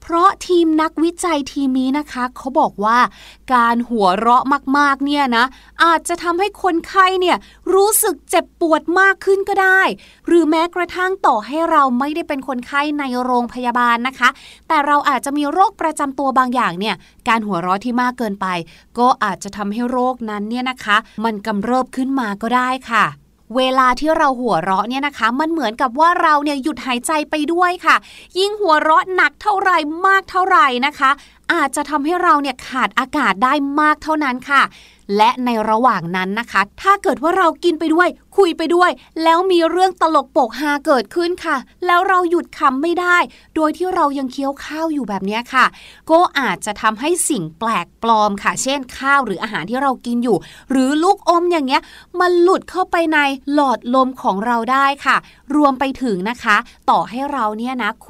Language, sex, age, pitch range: Thai, female, 20-39, 240-325 Hz